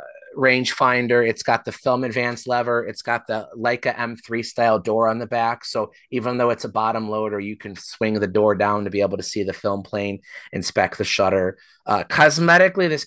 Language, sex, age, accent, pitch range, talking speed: English, male, 30-49, American, 110-145 Hz, 205 wpm